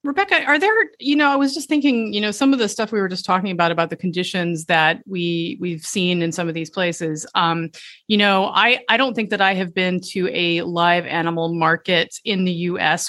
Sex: female